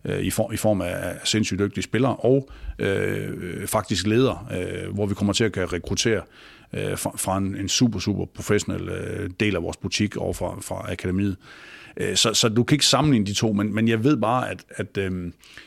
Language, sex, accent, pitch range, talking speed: Danish, male, native, 100-120 Hz, 175 wpm